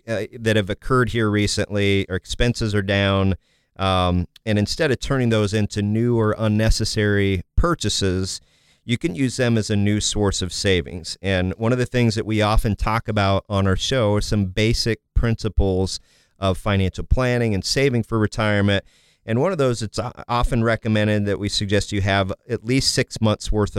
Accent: American